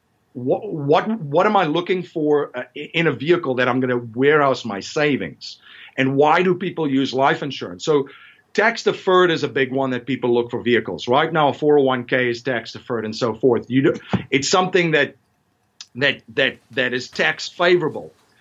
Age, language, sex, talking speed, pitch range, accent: 50-69, English, male, 185 wpm, 125-150 Hz, American